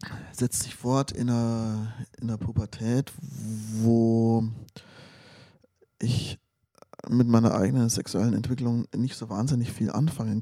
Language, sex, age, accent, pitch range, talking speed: German, male, 20-39, German, 120-140 Hz, 110 wpm